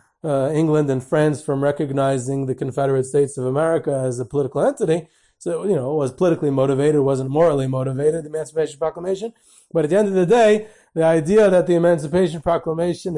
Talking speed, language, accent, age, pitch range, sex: 185 wpm, English, American, 30-49, 140-170 Hz, male